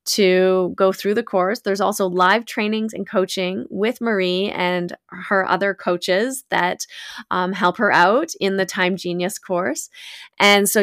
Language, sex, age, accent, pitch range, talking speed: English, female, 20-39, American, 185-220 Hz, 160 wpm